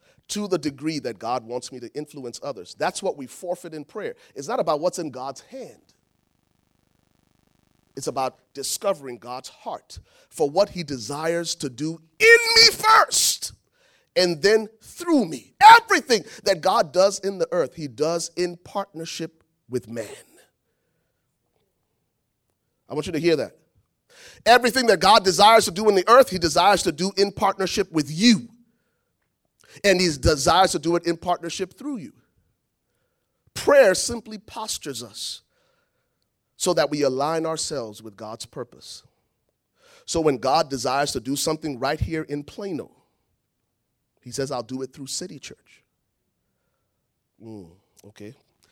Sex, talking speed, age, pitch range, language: male, 150 wpm, 30-49, 135-190 Hz, English